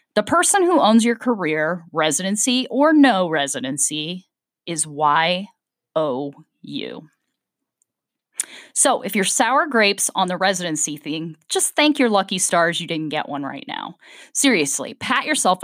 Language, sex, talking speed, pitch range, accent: English, female, 135 wpm, 165-255 Hz, American